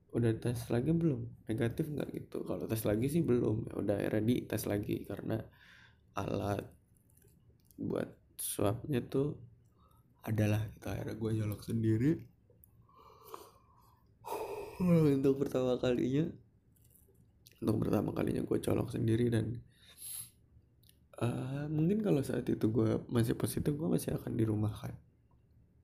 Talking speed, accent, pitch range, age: 115 wpm, native, 110-130 Hz, 20-39